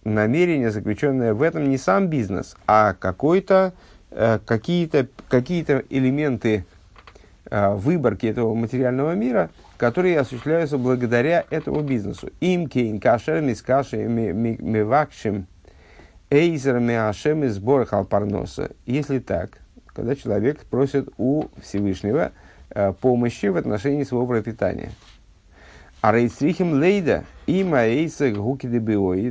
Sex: male